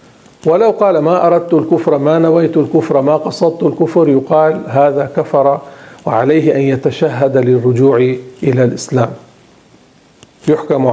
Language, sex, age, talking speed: Arabic, male, 50-69, 115 wpm